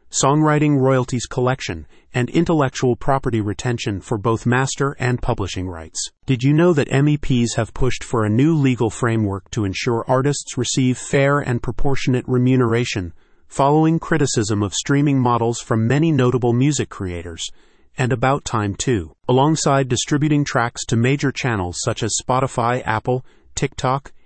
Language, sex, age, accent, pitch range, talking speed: English, male, 40-59, American, 110-135 Hz, 145 wpm